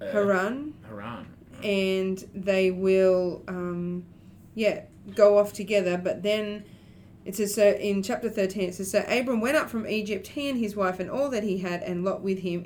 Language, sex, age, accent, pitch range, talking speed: English, female, 30-49, Australian, 180-210 Hz, 185 wpm